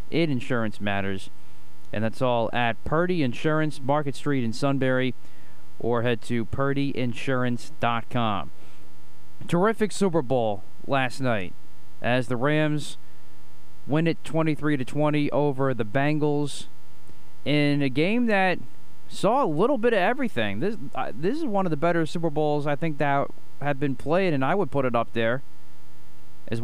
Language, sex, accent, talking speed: English, male, American, 145 wpm